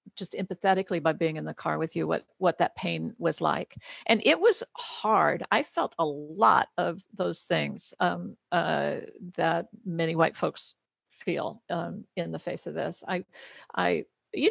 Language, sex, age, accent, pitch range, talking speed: English, female, 50-69, American, 170-225 Hz, 175 wpm